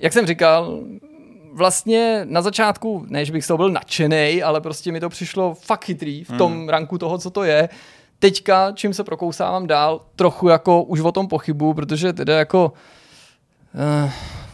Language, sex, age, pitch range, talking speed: Czech, male, 20-39, 145-165 Hz, 170 wpm